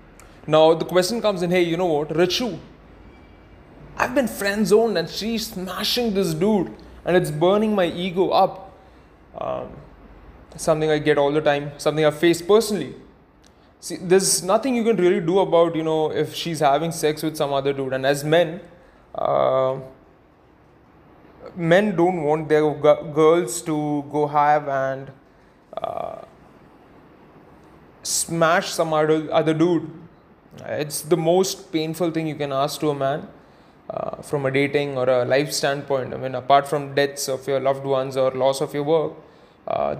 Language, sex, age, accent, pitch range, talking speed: English, male, 20-39, Indian, 145-180 Hz, 160 wpm